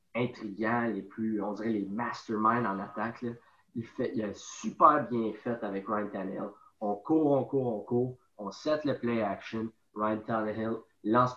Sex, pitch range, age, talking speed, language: male, 105-130 Hz, 20-39, 170 wpm, French